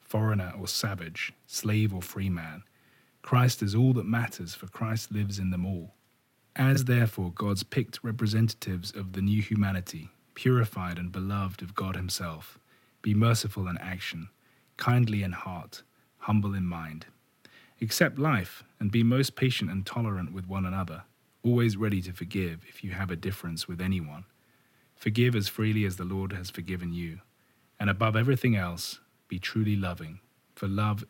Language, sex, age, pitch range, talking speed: English, male, 30-49, 95-115 Hz, 160 wpm